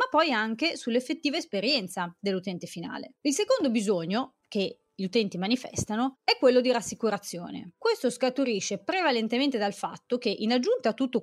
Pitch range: 185-260 Hz